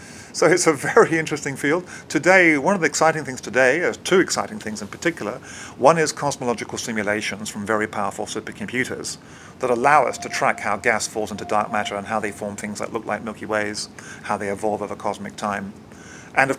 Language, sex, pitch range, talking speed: English, male, 105-135 Hz, 200 wpm